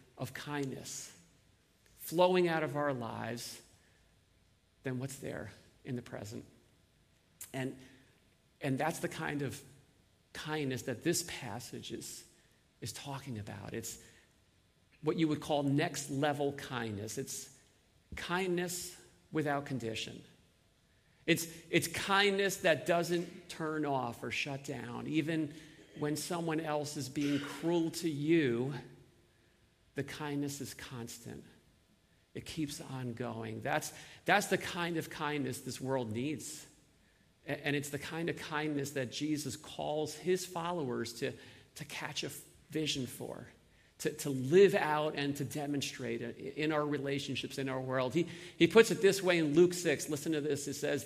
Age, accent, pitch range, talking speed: 50-69, American, 130-160 Hz, 140 wpm